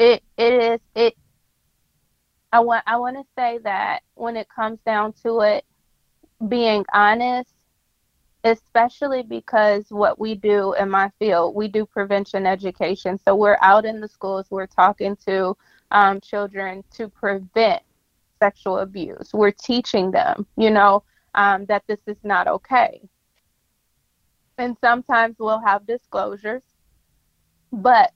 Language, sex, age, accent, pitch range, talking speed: English, female, 20-39, American, 200-230 Hz, 135 wpm